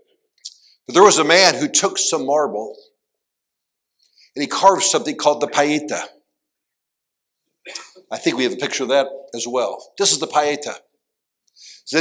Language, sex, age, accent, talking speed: English, male, 60-79, American, 155 wpm